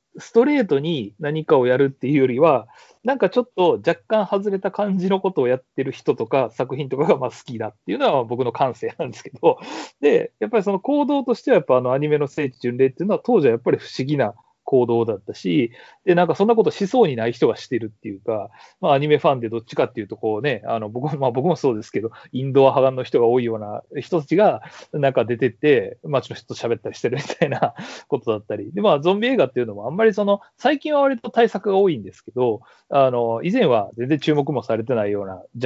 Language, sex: Japanese, male